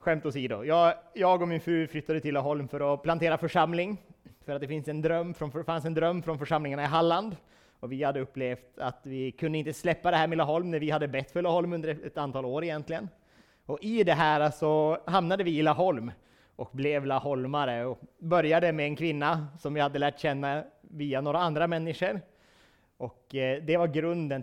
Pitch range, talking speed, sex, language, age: 140-170 Hz, 210 wpm, male, Swedish, 30-49